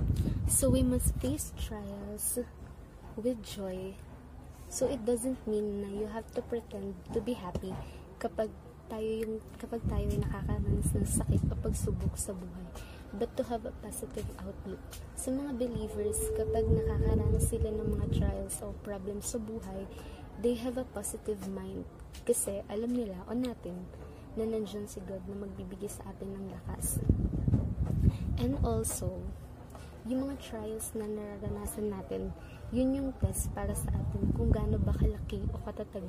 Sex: female